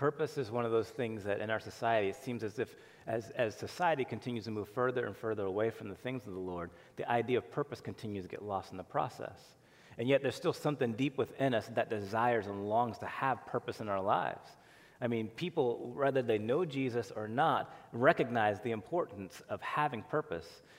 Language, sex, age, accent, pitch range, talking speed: English, male, 30-49, American, 105-135 Hz, 215 wpm